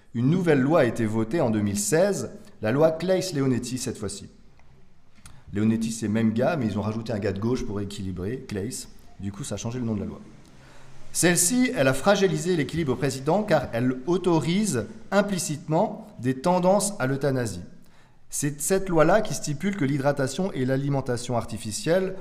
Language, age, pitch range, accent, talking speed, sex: French, 40-59, 110-155 Hz, French, 175 wpm, male